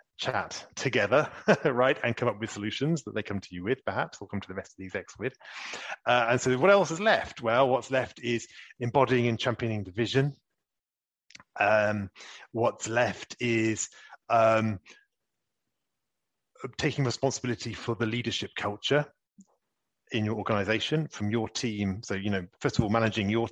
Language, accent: English, British